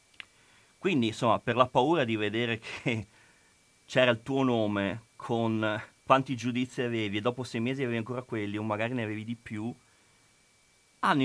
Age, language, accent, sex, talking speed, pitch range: 40-59, Italian, native, male, 160 wpm, 100-130 Hz